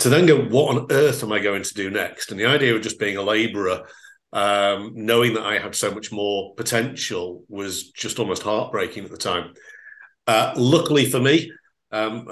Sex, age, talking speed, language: male, 50-69, 195 wpm, English